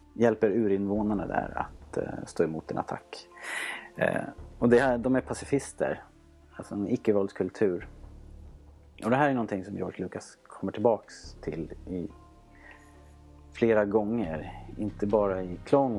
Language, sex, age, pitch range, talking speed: Swedish, male, 30-49, 85-110 Hz, 130 wpm